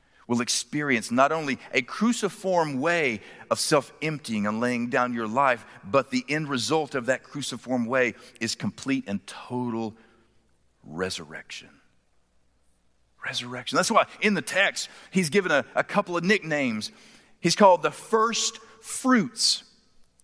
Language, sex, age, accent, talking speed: English, male, 40-59, American, 135 wpm